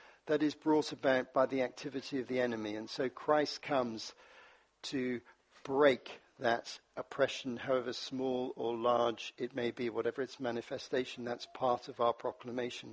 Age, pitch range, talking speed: 60-79, 130-215 Hz, 155 wpm